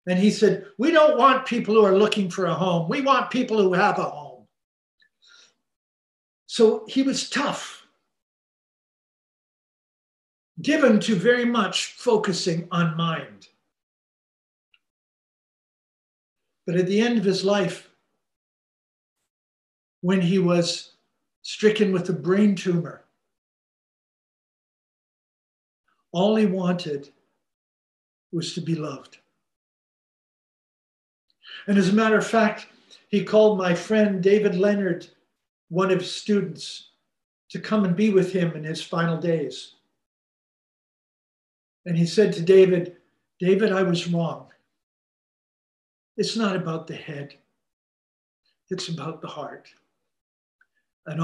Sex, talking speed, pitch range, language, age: male, 115 wpm, 170-210 Hz, English, 60-79